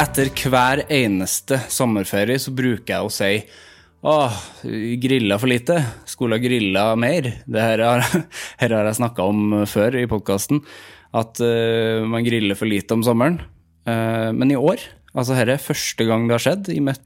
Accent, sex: Norwegian, male